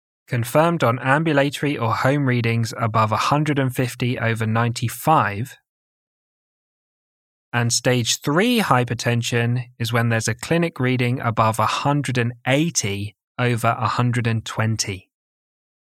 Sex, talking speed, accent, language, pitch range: male, 90 wpm, British, English, 110-135 Hz